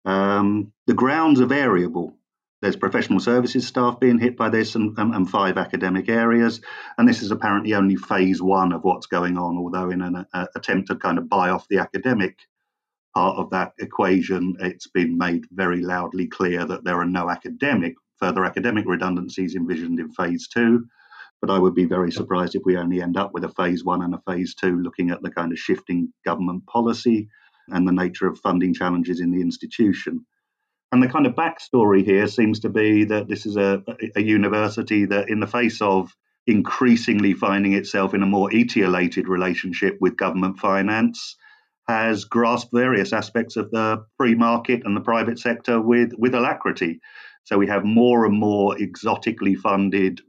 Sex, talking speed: male, 185 wpm